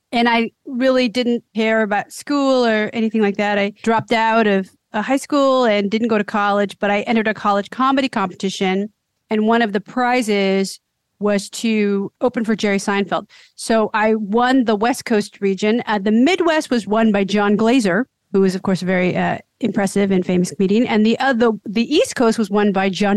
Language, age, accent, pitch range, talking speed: English, 40-59, American, 190-230 Hz, 195 wpm